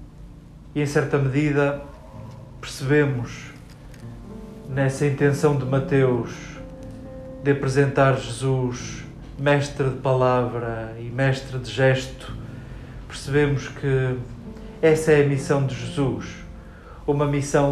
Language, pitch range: Portuguese, 130-145 Hz